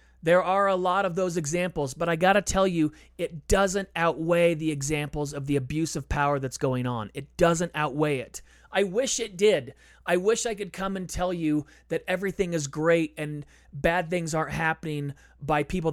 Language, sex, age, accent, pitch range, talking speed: English, male, 30-49, American, 140-195 Hz, 200 wpm